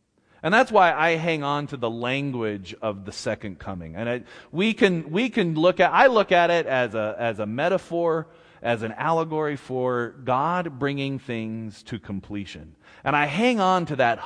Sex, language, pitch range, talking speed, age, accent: male, English, 120-175 Hz, 185 wpm, 30-49, American